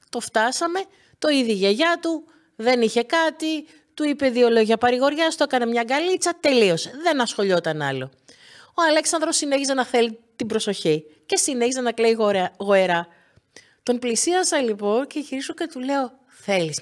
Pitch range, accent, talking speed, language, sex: 220-270 Hz, native, 155 wpm, Greek, female